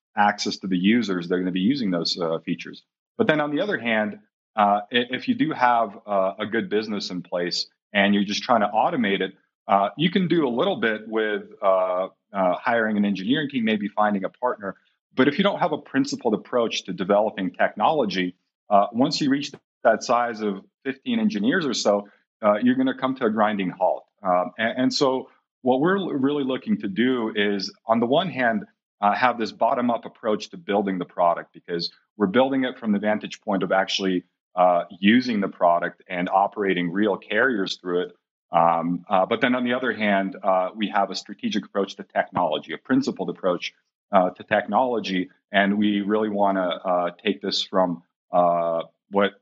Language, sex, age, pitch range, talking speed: English, male, 40-59, 95-120 Hz, 195 wpm